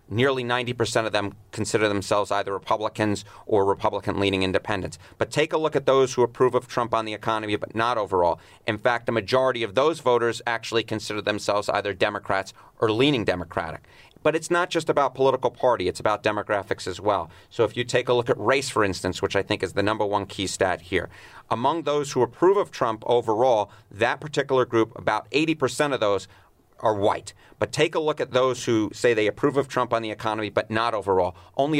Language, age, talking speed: English, 30-49, 205 wpm